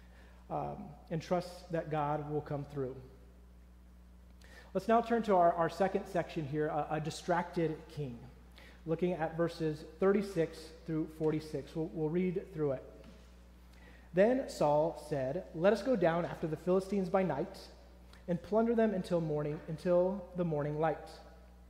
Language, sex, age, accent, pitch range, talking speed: English, male, 30-49, American, 140-185 Hz, 145 wpm